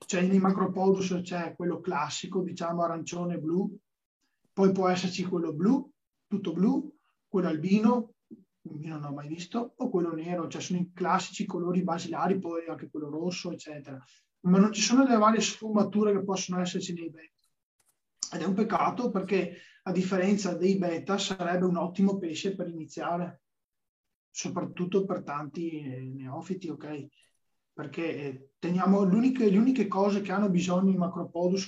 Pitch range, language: 165-195 Hz, Italian